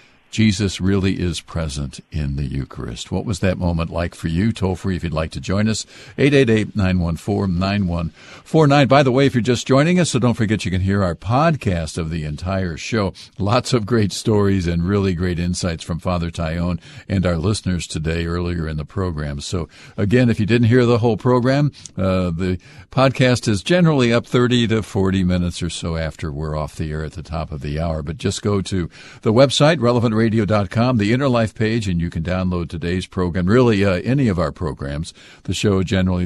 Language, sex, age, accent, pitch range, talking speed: English, male, 50-69, American, 85-120 Hz, 200 wpm